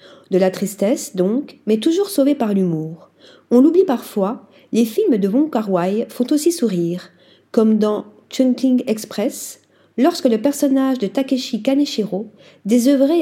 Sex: female